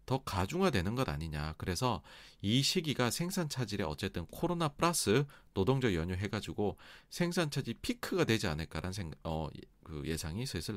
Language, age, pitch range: Korean, 40-59, 90-150 Hz